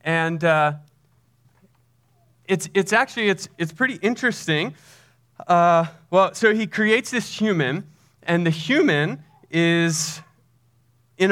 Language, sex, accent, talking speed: English, male, American, 110 wpm